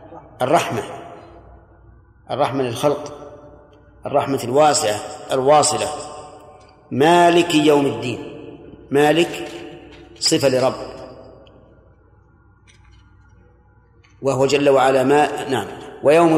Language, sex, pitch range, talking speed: Arabic, male, 125-150 Hz, 65 wpm